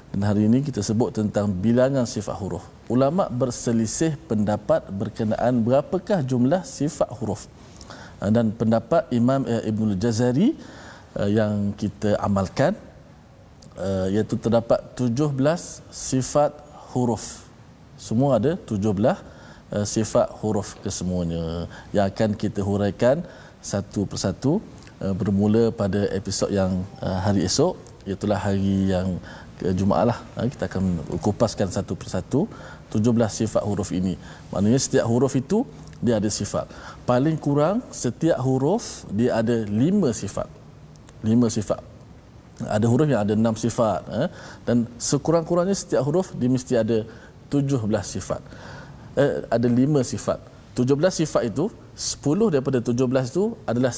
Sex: male